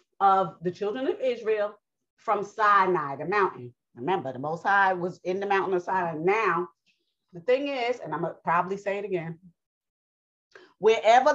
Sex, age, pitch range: female, 30-49, 160-220 Hz